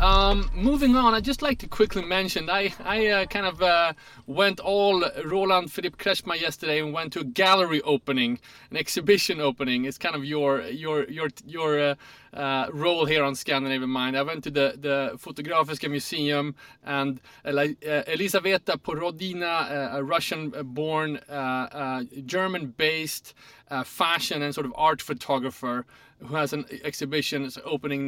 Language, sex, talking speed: English, male, 150 wpm